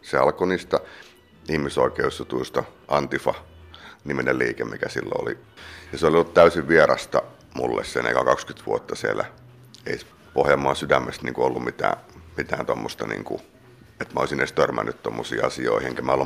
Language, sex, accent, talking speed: Finnish, male, native, 150 wpm